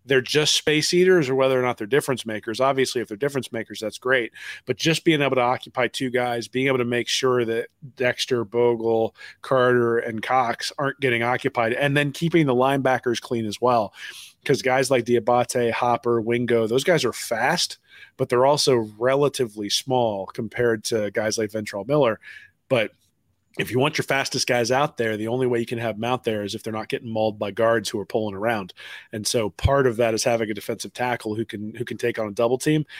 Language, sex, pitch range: English, male, 110-130 Hz